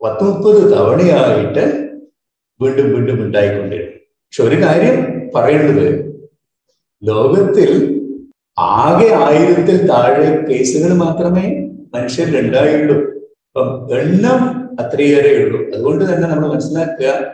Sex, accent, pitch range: male, native, 150-220 Hz